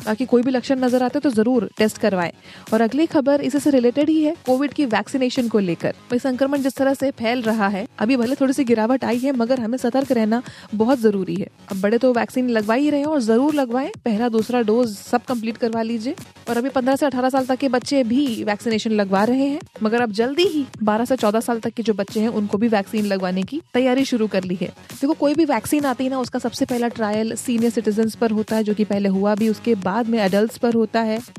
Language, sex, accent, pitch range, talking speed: Hindi, female, native, 220-265 Hz, 235 wpm